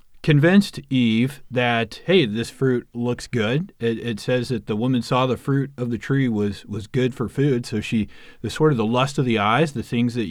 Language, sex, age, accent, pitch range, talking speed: English, male, 30-49, American, 105-135 Hz, 220 wpm